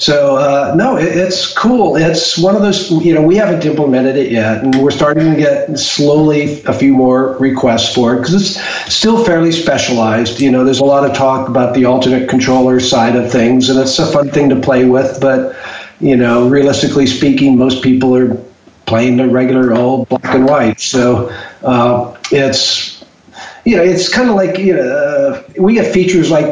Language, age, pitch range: English, 50-69, 125-155 Hz